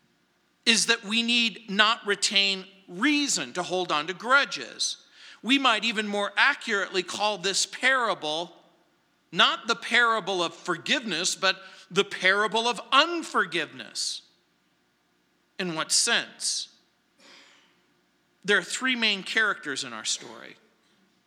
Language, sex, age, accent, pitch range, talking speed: English, male, 50-69, American, 170-230 Hz, 115 wpm